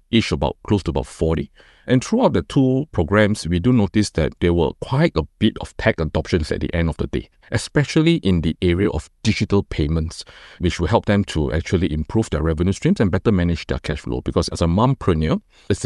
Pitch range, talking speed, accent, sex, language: 80-110 Hz, 215 wpm, Malaysian, male, English